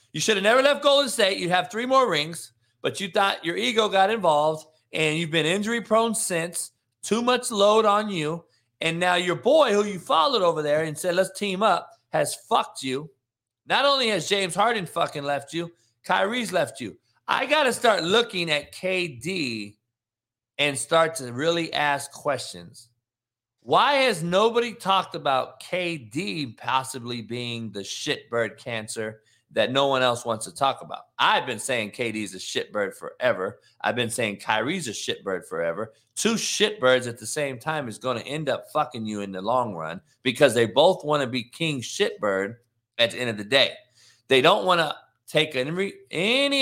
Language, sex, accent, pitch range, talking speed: English, male, American, 120-180 Hz, 180 wpm